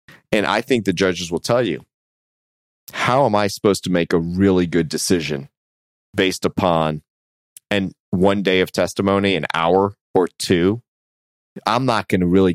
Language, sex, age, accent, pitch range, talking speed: English, male, 30-49, American, 85-115 Hz, 160 wpm